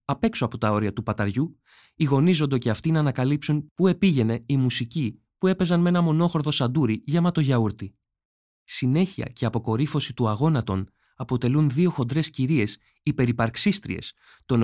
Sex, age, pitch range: male, 20-39, 120-155 Hz